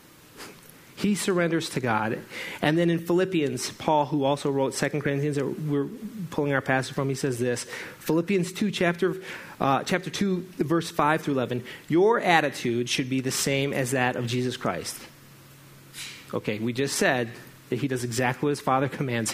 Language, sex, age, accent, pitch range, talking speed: English, male, 30-49, American, 125-165 Hz, 175 wpm